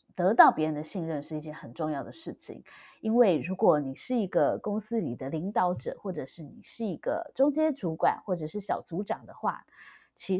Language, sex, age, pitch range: Chinese, female, 20-39, 160-225 Hz